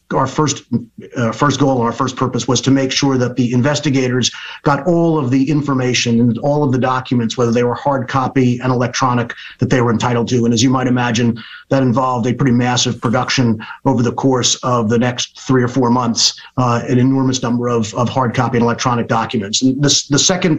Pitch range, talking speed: 120-140 Hz, 215 wpm